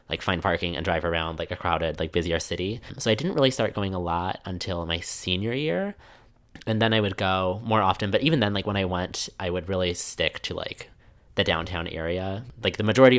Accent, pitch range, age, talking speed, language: American, 90-110 Hz, 20-39, 230 wpm, English